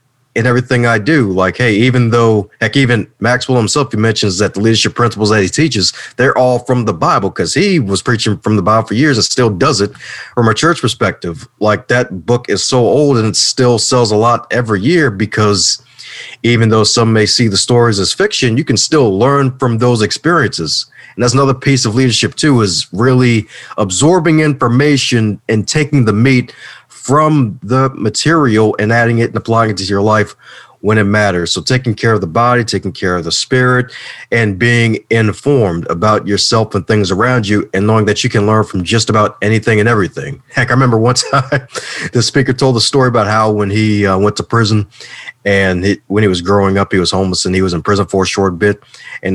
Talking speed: 210 wpm